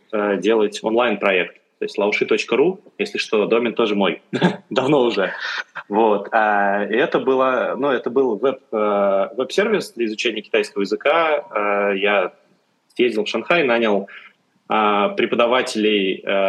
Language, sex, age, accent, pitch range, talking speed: Russian, male, 20-39, native, 100-130 Hz, 115 wpm